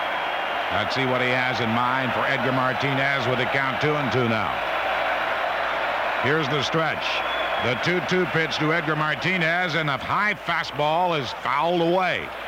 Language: English